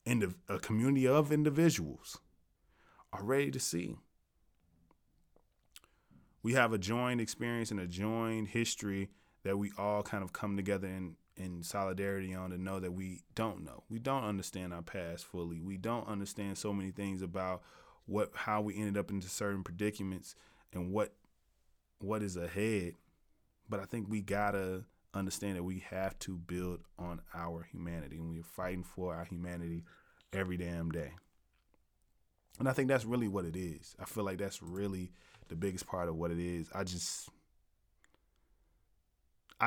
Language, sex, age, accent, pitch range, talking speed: English, male, 20-39, American, 90-110 Hz, 160 wpm